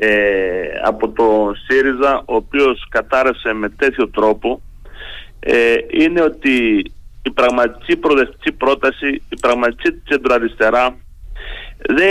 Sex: male